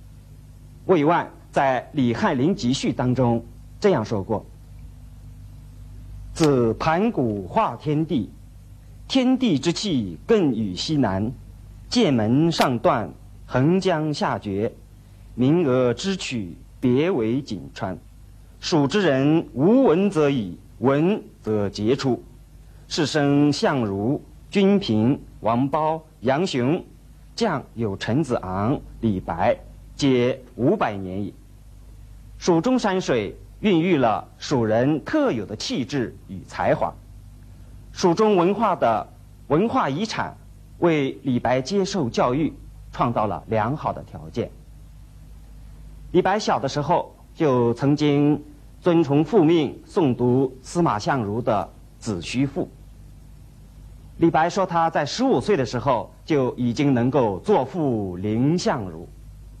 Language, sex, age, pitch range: Chinese, male, 50-69, 105-155 Hz